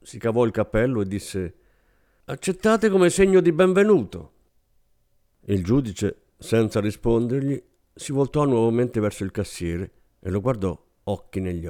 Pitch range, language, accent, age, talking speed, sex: 95-120 Hz, Italian, native, 50-69, 135 wpm, male